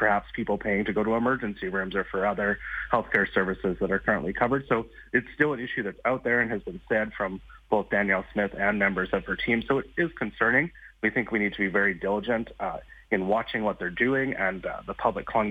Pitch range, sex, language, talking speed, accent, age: 105-130 Hz, male, English, 235 wpm, American, 30-49